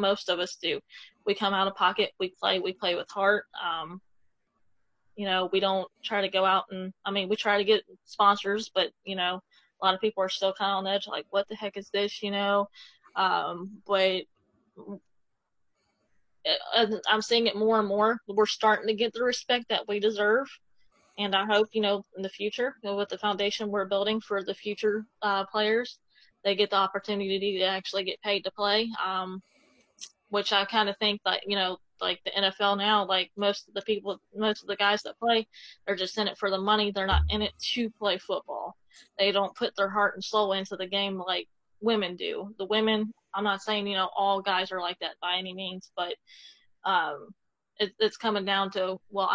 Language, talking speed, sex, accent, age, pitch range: English, 210 wpm, female, American, 20-39, 195-215 Hz